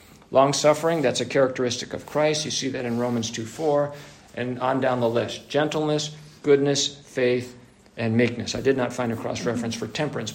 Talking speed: 180 wpm